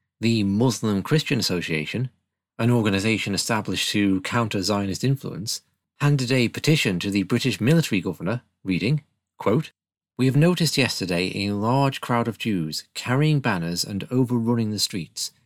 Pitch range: 105-140 Hz